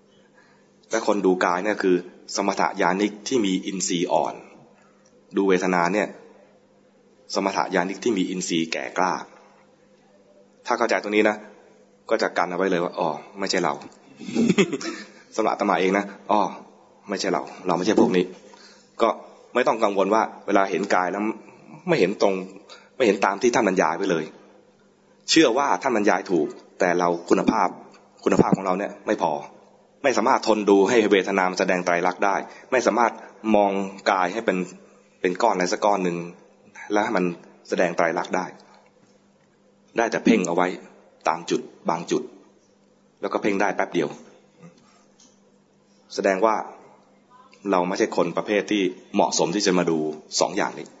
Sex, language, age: male, English, 20-39